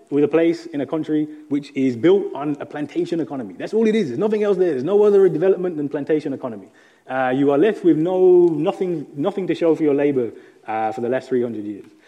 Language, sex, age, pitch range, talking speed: English, male, 20-39, 145-235 Hz, 235 wpm